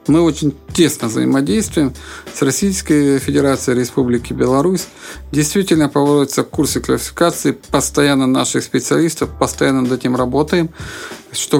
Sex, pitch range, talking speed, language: male, 135-165 Hz, 110 wpm, Russian